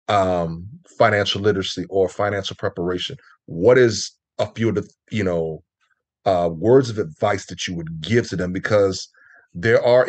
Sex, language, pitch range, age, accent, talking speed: male, English, 95-120 Hz, 30-49, American, 160 wpm